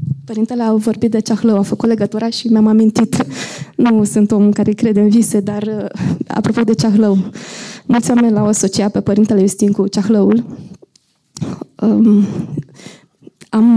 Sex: female